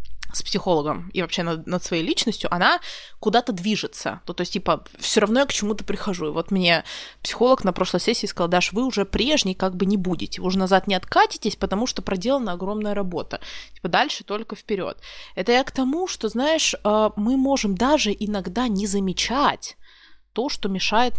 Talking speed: 185 wpm